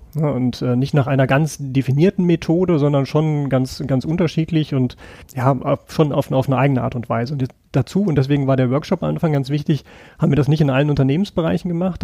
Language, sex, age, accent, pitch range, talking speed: German, male, 40-59, German, 130-155 Hz, 215 wpm